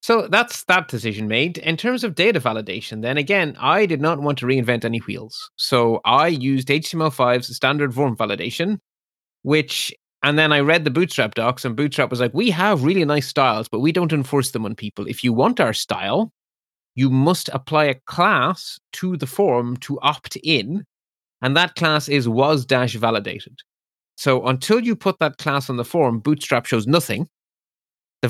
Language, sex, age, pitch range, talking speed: English, male, 30-49, 120-155 Hz, 180 wpm